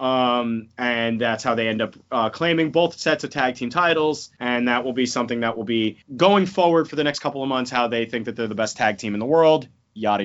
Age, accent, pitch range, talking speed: 20-39, American, 125-155 Hz, 260 wpm